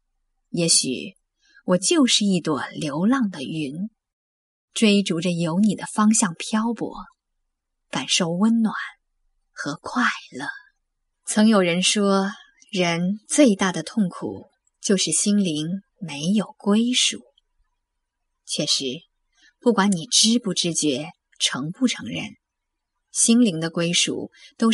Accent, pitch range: native, 175-235 Hz